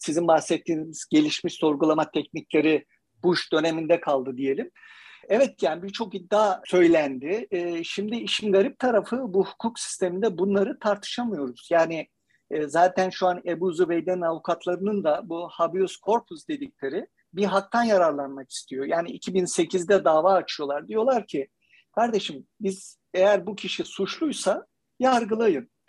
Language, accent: Turkish, native